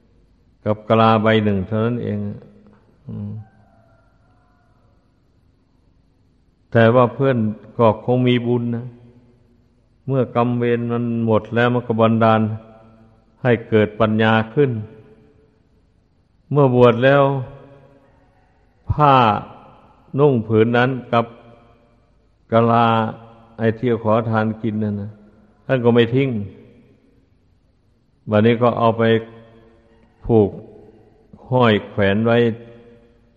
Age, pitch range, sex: 60-79, 110-120 Hz, male